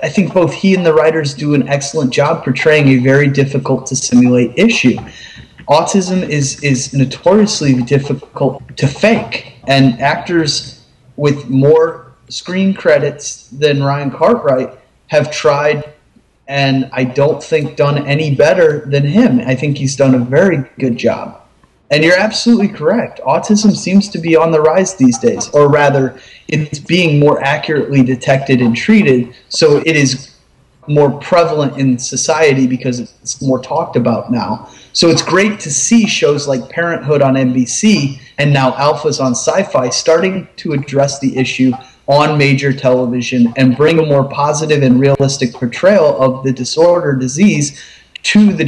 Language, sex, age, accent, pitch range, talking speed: English, male, 30-49, American, 130-160 Hz, 155 wpm